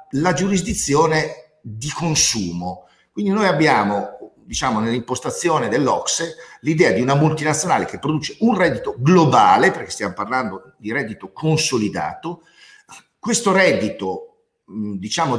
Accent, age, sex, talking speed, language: native, 50-69, male, 110 wpm, Italian